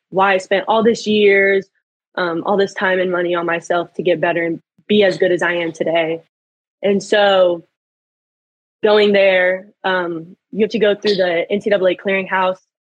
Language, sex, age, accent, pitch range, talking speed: English, female, 20-39, American, 180-220 Hz, 175 wpm